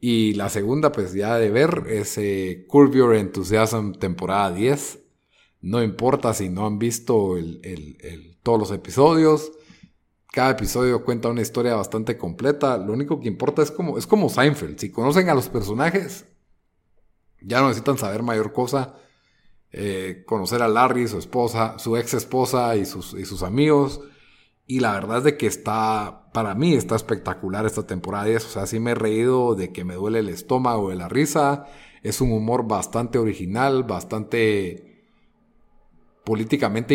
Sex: male